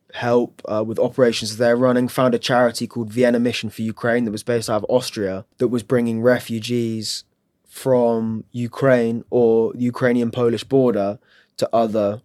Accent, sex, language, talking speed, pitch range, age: British, male, Ukrainian, 155 wpm, 105-125 Hz, 20-39